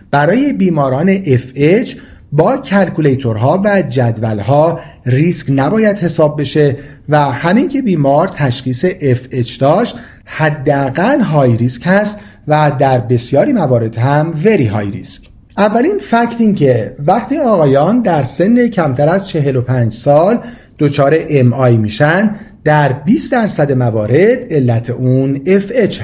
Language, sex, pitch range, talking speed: Persian, male, 130-190 Hz, 120 wpm